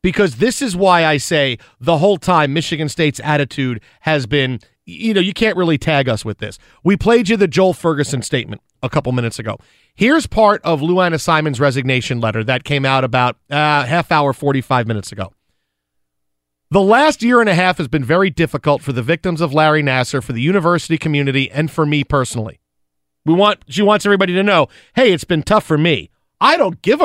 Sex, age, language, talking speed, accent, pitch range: male, 40-59, English, 200 wpm, American, 140-200 Hz